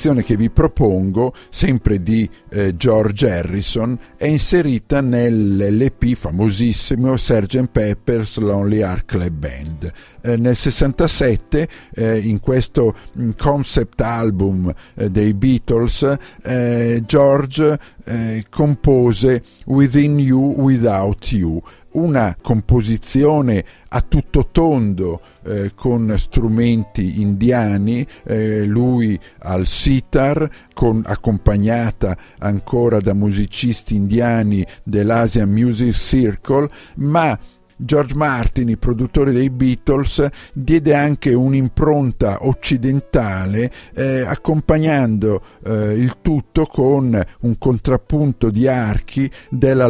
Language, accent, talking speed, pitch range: Italian, native, 95 wpm, 105-135 Hz